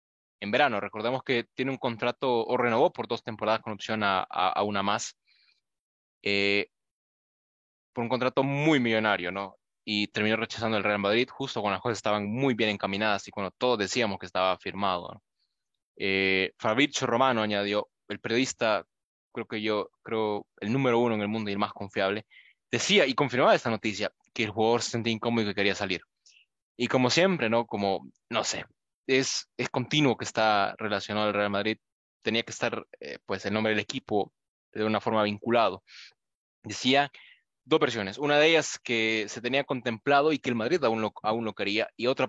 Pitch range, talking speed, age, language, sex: 105-125 Hz, 185 wpm, 20-39, English, male